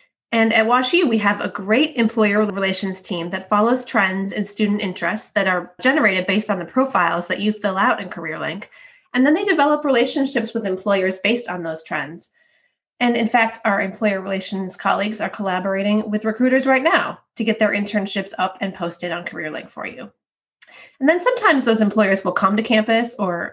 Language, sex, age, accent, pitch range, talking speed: English, female, 20-39, American, 185-240 Hz, 190 wpm